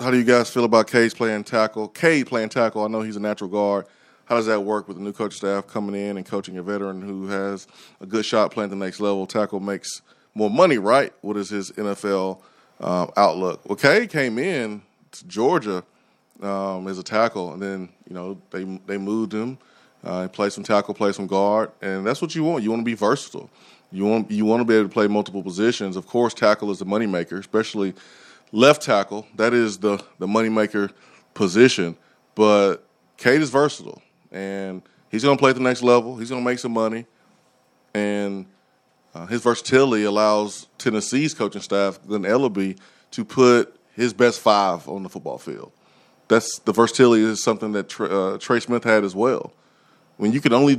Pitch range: 100-120 Hz